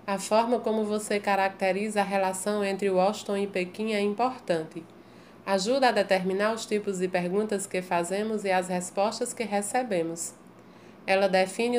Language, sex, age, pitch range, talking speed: Portuguese, female, 20-39, 195-240 Hz, 150 wpm